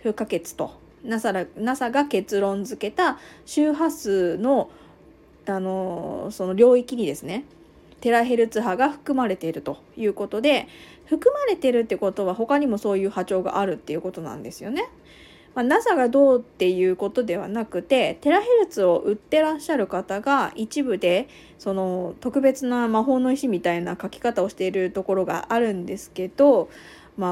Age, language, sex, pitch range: 20-39, Japanese, female, 185-280 Hz